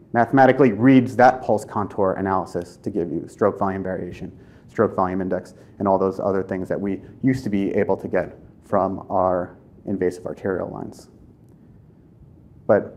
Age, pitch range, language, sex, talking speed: 30-49, 100-120 Hz, English, male, 155 wpm